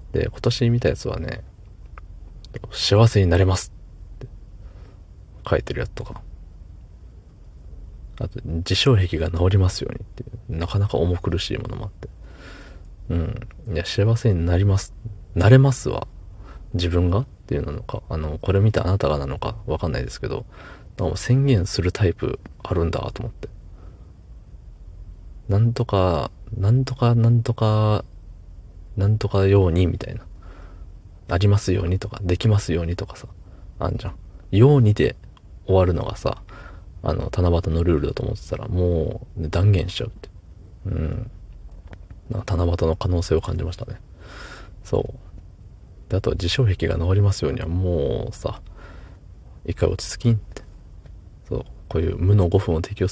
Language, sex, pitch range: Japanese, male, 85-105 Hz